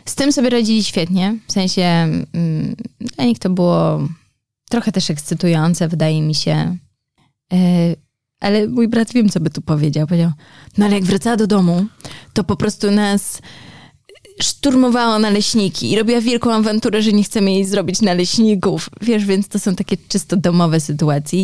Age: 20-39